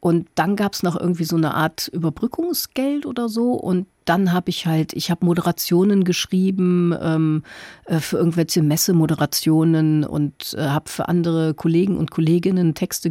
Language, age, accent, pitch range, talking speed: German, 50-69, German, 170-210 Hz, 150 wpm